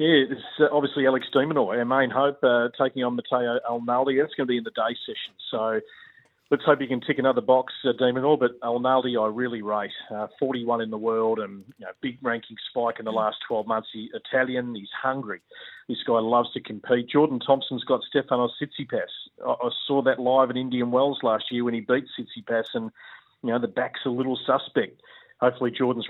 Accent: Australian